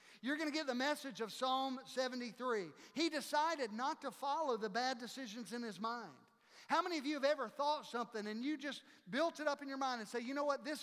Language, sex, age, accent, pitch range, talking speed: English, male, 50-69, American, 215-280 Hz, 235 wpm